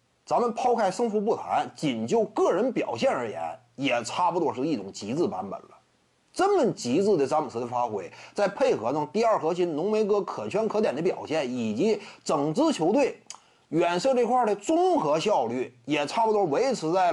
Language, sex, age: Chinese, male, 30-49